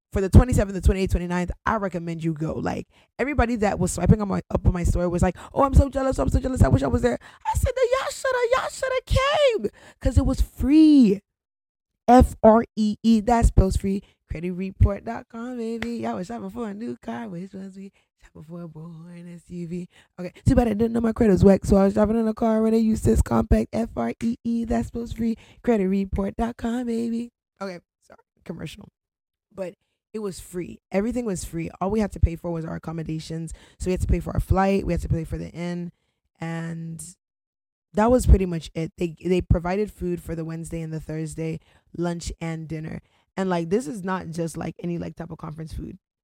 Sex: female